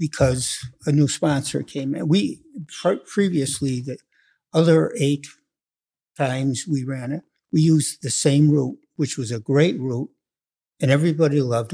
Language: English